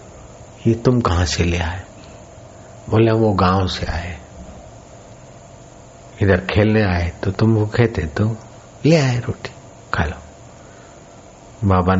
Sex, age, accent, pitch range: male, 50-69, native, 90-110 Hz